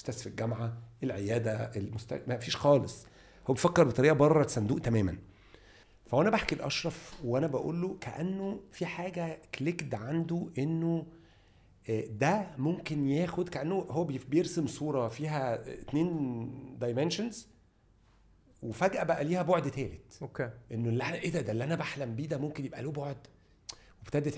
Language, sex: Arabic, male